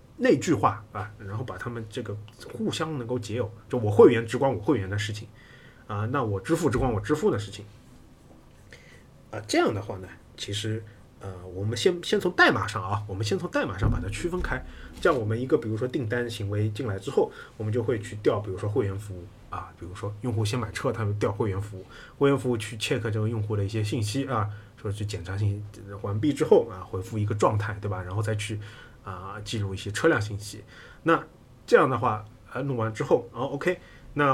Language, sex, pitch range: Chinese, male, 105-125 Hz